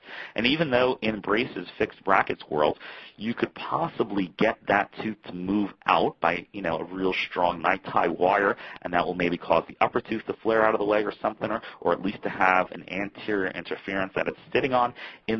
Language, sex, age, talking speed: English, male, 40-59, 215 wpm